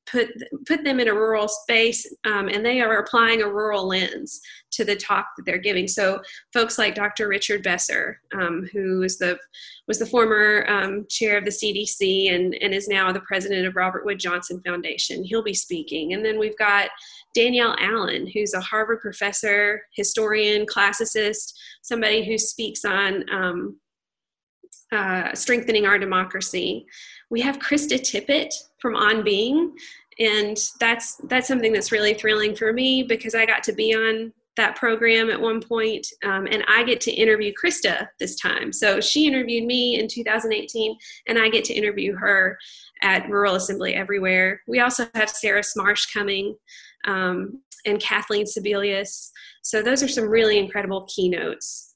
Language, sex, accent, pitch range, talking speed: English, female, American, 200-230 Hz, 165 wpm